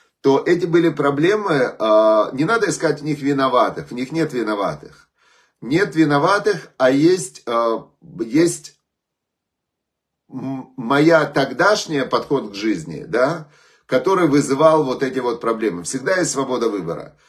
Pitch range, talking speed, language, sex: 115-155 Hz, 120 wpm, Russian, male